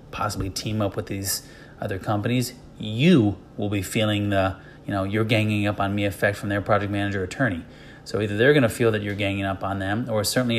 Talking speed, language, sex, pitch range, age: 220 wpm, English, male, 95-115 Hz, 30-49